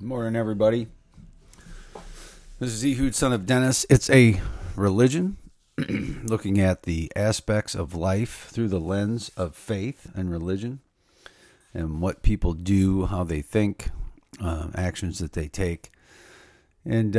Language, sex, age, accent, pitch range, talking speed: English, male, 50-69, American, 90-115 Hz, 135 wpm